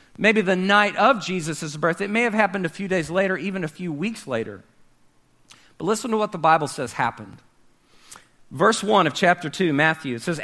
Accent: American